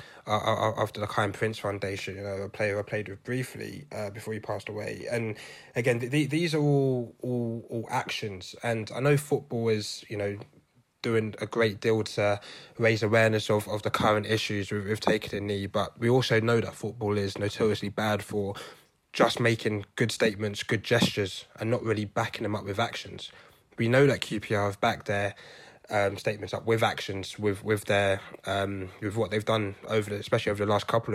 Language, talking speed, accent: English, 195 wpm, British